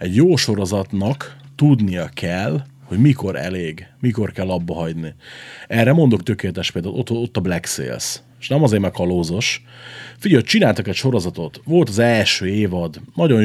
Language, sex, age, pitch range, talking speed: Hungarian, male, 30-49, 95-125 Hz, 150 wpm